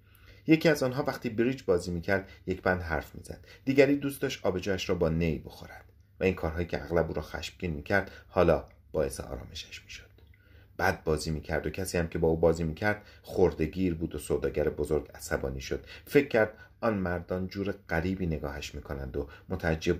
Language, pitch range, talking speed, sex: Persian, 80-95 Hz, 175 wpm, male